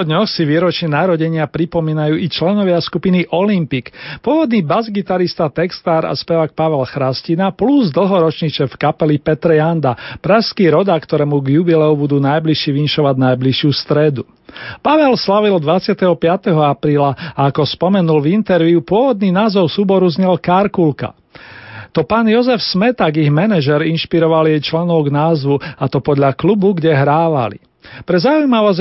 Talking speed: 135 wpm